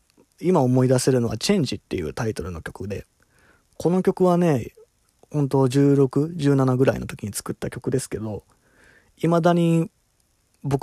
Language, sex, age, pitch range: Japanese, male, 20-39, 115-145 Hz